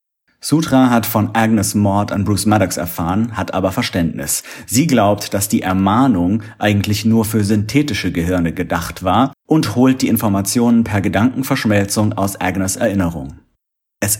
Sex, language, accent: male, German, German